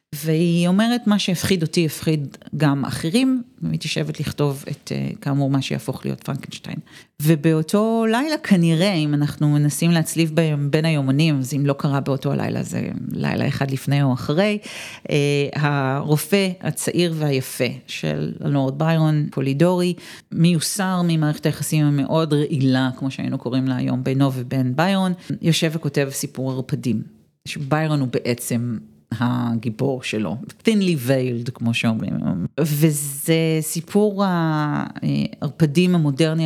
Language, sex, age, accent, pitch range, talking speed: Hebrew, female, 40-59, native, 135-170 Hz, 125 wpm